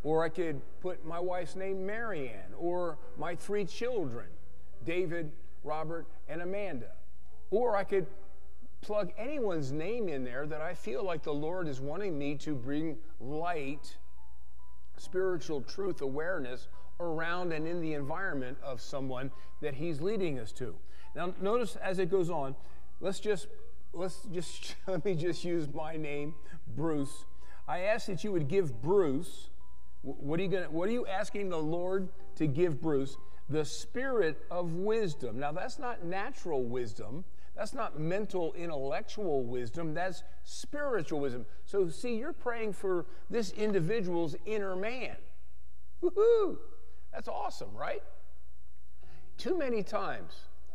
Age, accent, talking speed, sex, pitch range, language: 40-59, American, 145 wpm, male, 130-185 Hz, English